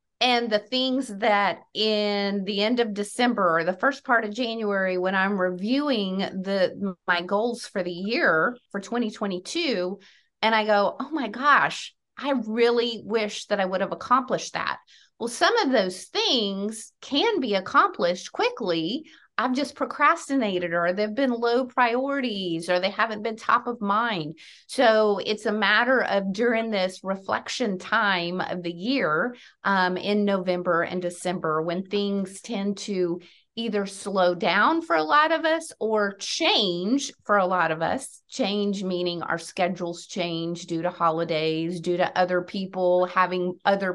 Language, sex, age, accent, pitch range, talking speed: English, female, 30-49, American, 180-235 Hz, 155 wpm